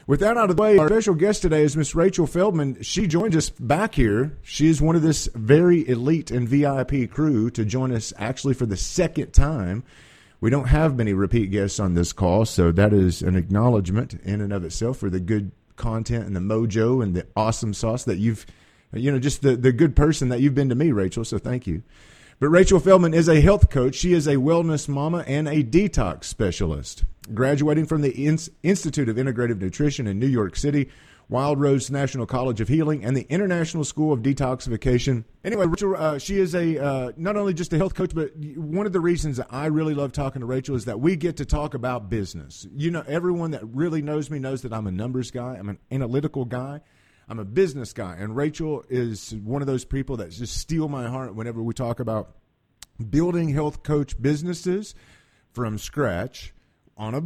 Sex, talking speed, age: male, 210 wpm, 40-59